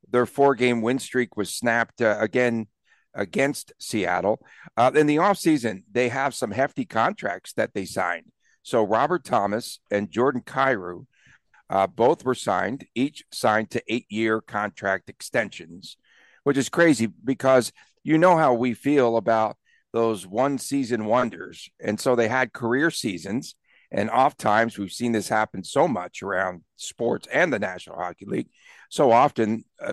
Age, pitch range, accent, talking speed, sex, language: 60-79, 105-130 Hz, American, 155 wpm, male, English